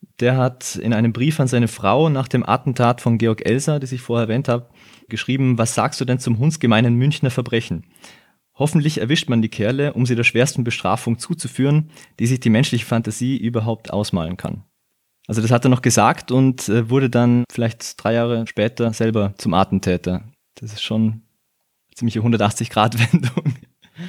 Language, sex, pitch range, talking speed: German, male, 110-130 Hz, 170 wpm